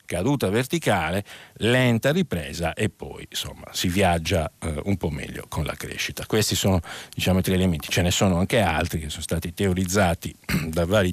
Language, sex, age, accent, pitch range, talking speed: Italian, male, 50-69, native, 90-130 Hz, 180 wpm